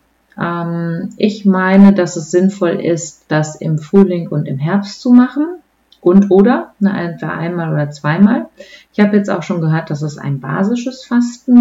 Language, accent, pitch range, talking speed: German, German, 150-210 Hz, 165 wpm